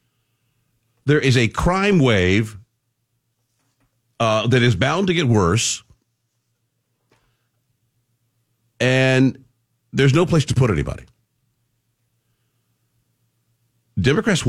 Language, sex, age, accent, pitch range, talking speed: English, male, 50-69, American, 115-135 Hz, 85 wpm